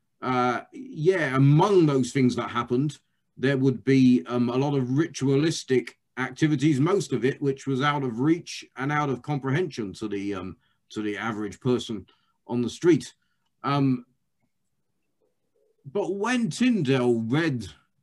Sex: male